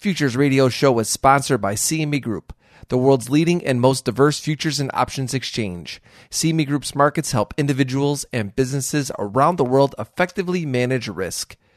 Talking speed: 160 wpm